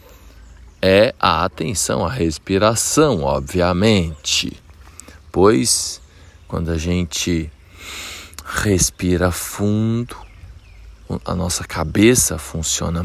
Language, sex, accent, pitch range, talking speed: Portuguese, male, Brazilian, 80-95 Hz, 75 wpm